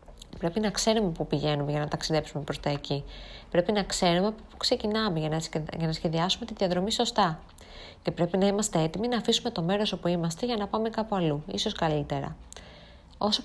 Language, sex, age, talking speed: Greek, female, 20-39, 190 wpm